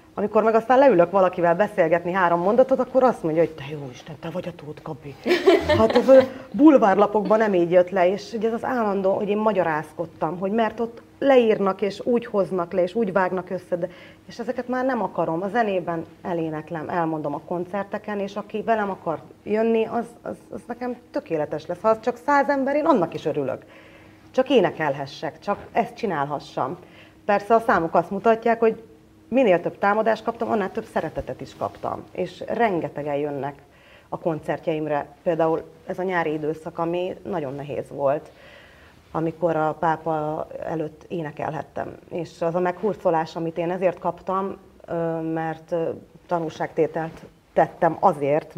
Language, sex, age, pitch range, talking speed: Hungarian, female, 30-49, 160-220 Hz, 160 wpm